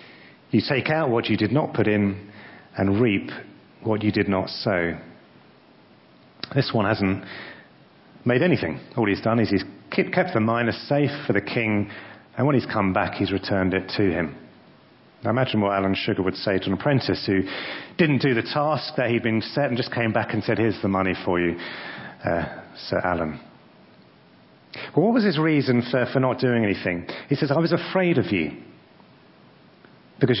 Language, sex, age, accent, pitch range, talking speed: English, male, 30-49, British, 100-140 Hz, 185 wpm